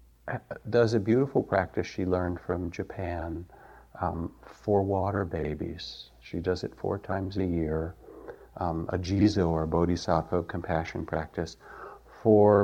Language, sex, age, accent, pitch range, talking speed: English, male, 50-69, American, 85-105 Hz, 130 wpm